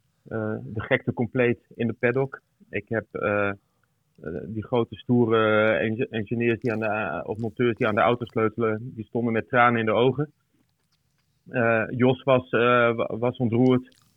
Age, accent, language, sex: 30-49, Dutch, Dutch, male